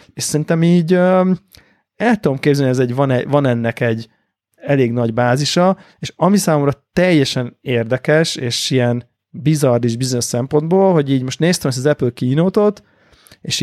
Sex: male